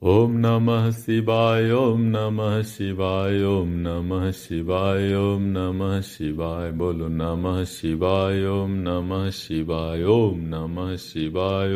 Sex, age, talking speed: male, 50-69, 90 wpm